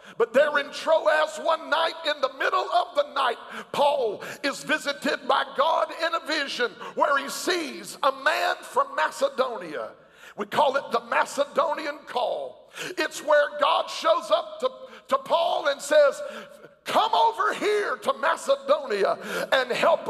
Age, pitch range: 50-69, 280-325 Hz